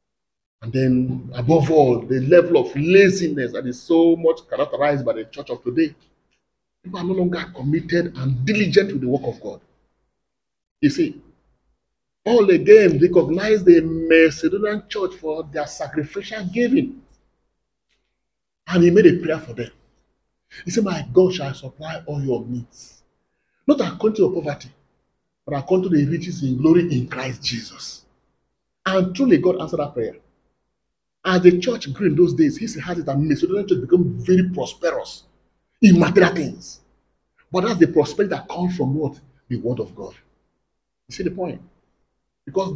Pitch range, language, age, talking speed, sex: 145-210 Hz, English, 40-59, 165 wpm, male